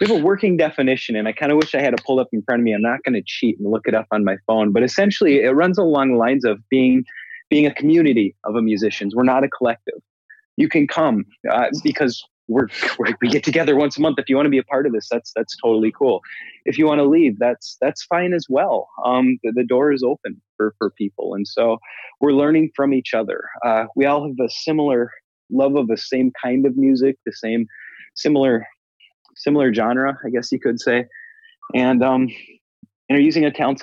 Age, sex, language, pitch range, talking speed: 20-39, male, English, 115-150 Hz, 230 wpm